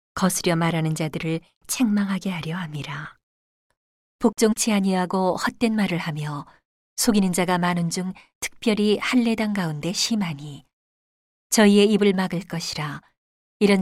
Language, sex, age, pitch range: Korean, female, 40-59, 170-210 Hz